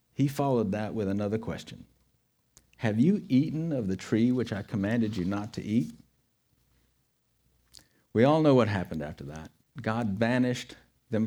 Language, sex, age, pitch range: English, male, 50-69, 95-120 Hz